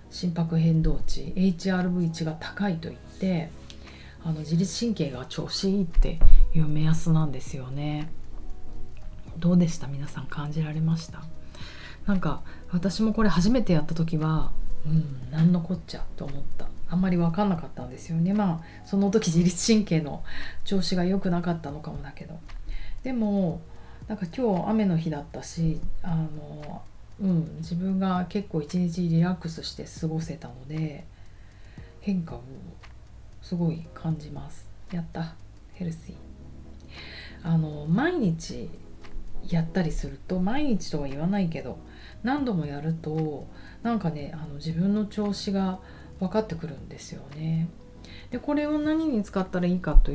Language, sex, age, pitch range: Japanese, female, 30-49, 145-185 Hz